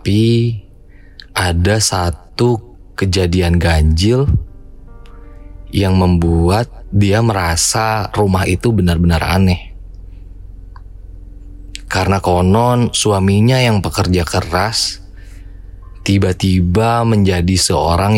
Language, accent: Indonesian, native